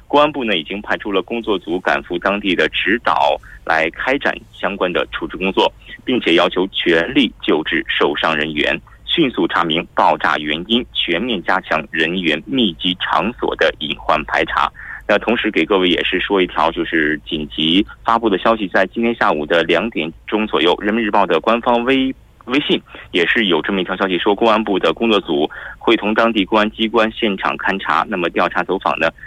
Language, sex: Korean, male